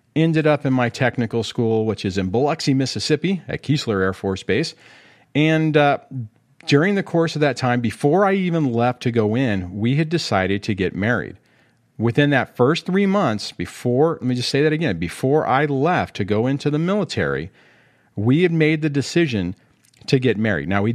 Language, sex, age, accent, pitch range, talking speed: English, male, 40-59, American, 110-150 Hz, 190 wpm